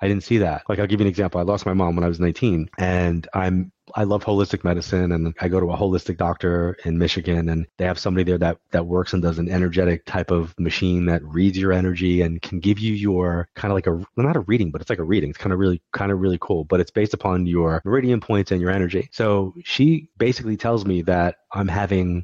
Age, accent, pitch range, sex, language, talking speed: 30-49, American, 85-110 Hz, male, English, 260 wpm